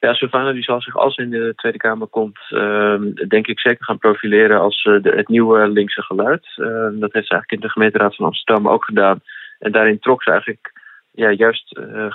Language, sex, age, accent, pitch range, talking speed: Dutch, male, 20-39, Dutch, 100-115 Hz, 200 wpm